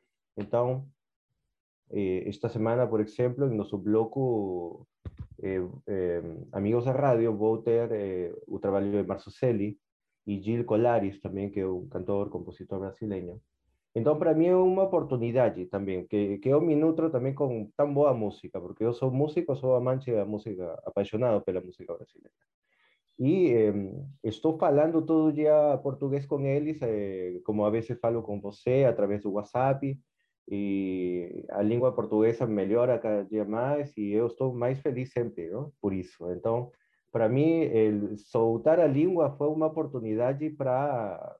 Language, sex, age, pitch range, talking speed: Portuguese, male, 30-49, 100-130 Hz, 160 wpm